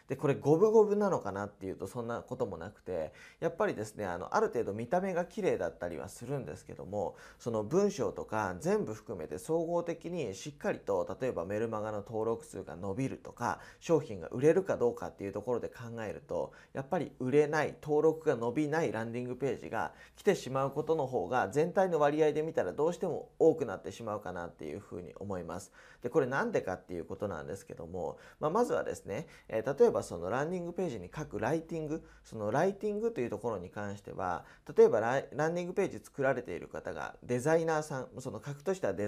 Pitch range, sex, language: 115-185 Hz, male, Japanese